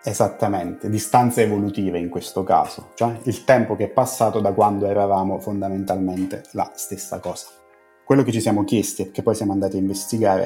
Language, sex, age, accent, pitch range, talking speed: Italian, male, 30-49, native, 95-115 Hz, 180 wpm